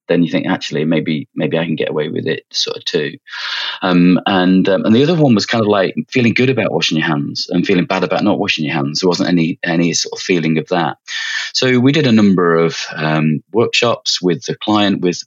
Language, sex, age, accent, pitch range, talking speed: English, male, 30-49, British, 80-100 Hz, 240 wpm